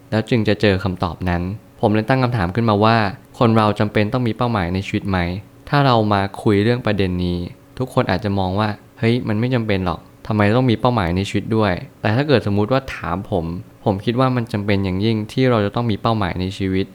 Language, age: Thai, 20-39